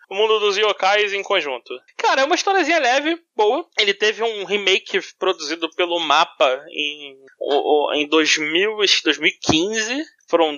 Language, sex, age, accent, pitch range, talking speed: Portuguese, male, 20-39, Brazilian, 185-265 Hz, 135 wpm